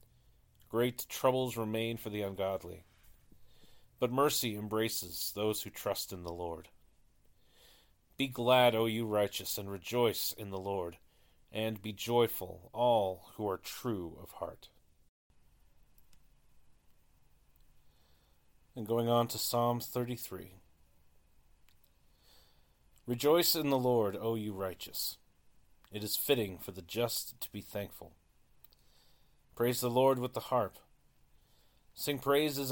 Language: English